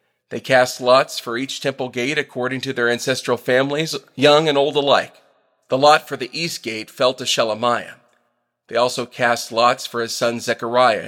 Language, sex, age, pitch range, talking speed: English, male, 40-59, 120-155 Hz, 180 wpm